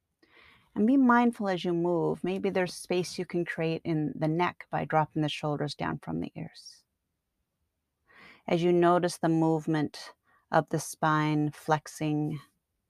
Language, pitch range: English, 145-180 Hz